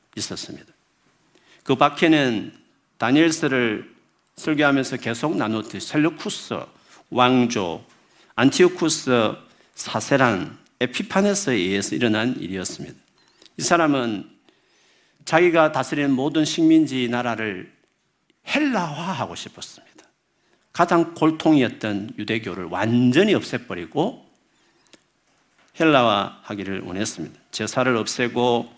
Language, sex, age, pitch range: Korean, male, 50-69, 115-155 Hz